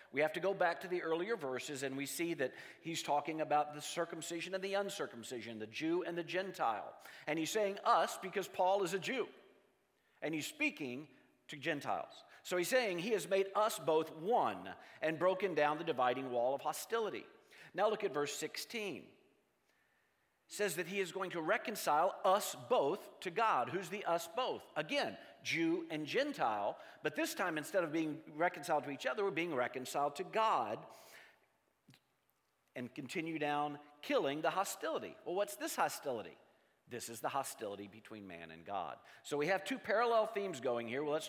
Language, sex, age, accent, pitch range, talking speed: English, male, 50-69, American, 135-190 Hz, 180 wpm